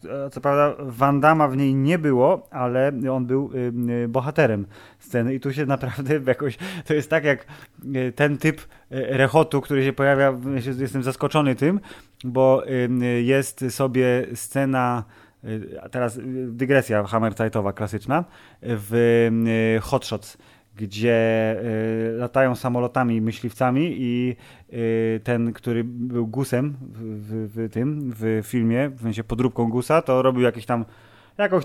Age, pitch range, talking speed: 30-49, 120-145 Hz, 125 wpm